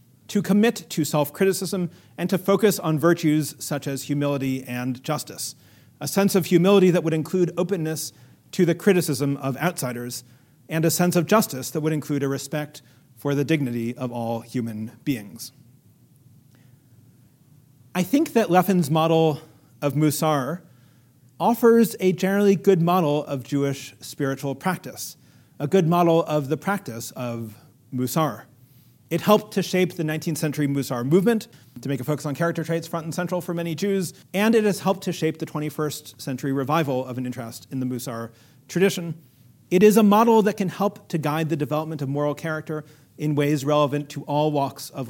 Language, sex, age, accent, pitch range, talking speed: English, male, 40-59, American, 135-175 Hz, 170 wpm